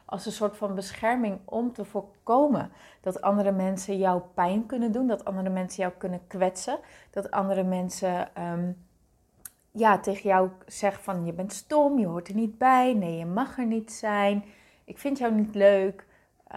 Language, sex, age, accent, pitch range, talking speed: Dutch, female, 30-49, Dutch, 185-215 Hz, 170 wpm